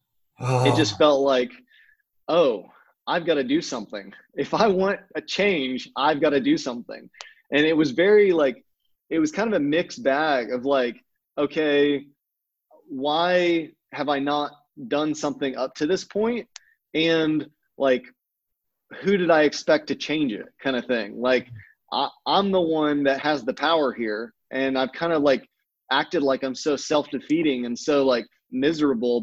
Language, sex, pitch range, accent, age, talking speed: English, male, 130-155 Hz, American, 20-39, 165 wpm